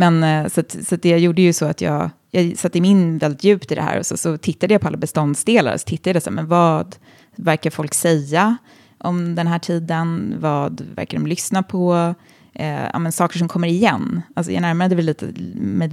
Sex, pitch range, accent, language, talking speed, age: female, 150-180 Hz, native, Swedish, 190 wpm, 20-39